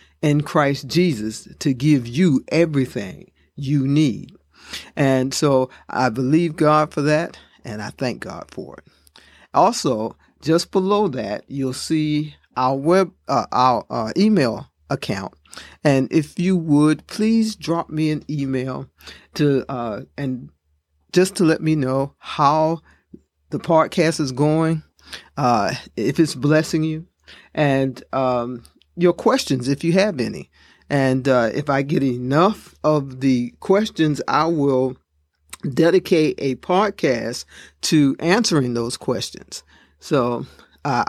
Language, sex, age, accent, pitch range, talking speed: English, male, 50-69, American, 125-160 Hz, 135 wpm